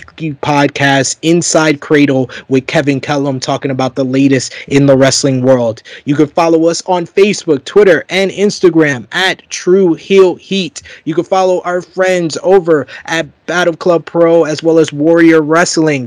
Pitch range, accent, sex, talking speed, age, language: 145-170 Hz, American, male, 155 wpm, 20-39, English